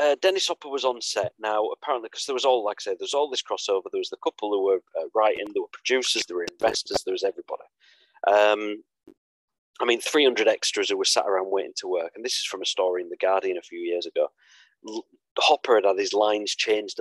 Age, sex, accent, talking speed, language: 30-49, male, British, 245 wpm, English